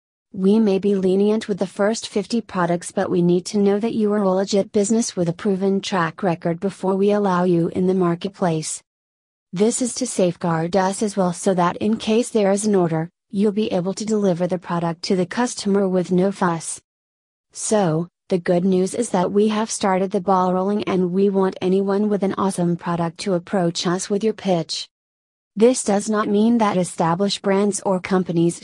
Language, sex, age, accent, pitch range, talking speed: English, female, 30-49, American, 175-200 Hz, 200 wpm